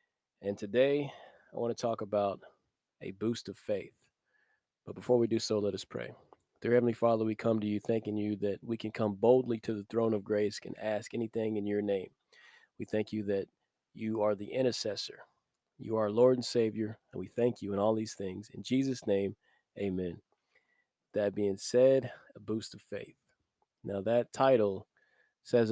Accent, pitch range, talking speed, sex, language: American, 105-120 Hz, 185 wpm, male, English